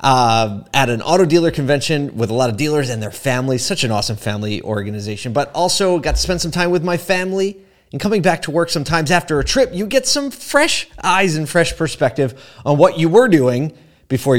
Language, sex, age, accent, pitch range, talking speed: English, male, 30-49, American, 115-150 Hz, 215 wpm